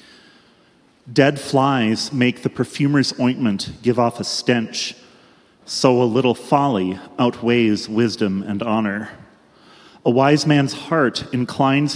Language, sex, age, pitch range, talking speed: English, male, 30-49, 110-140 Hz, 115 wpm